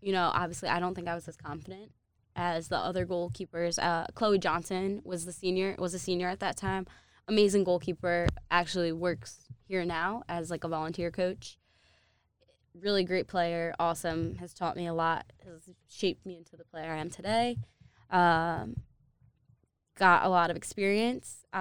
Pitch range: 160-185 Hz